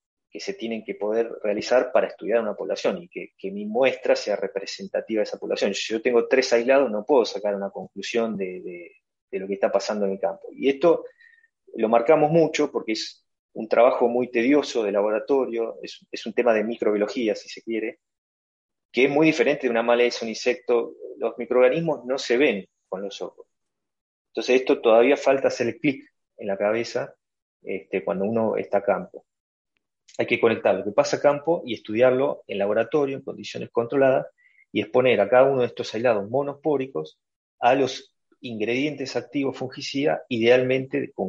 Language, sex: Spanish, male